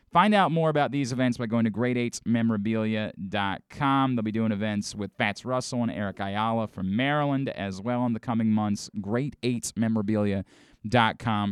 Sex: male